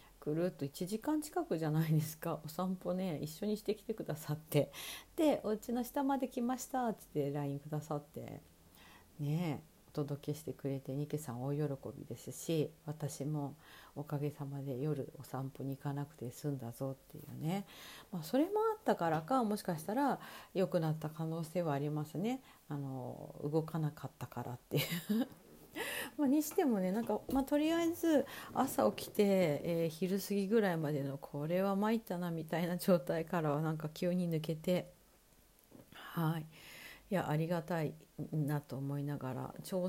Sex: female